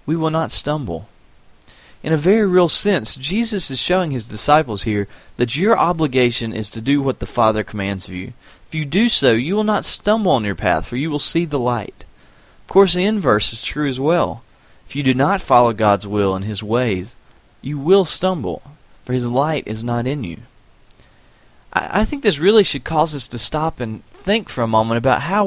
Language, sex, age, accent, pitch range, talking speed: English, male, 30-49, American, 115-175 Hz, 210 wpm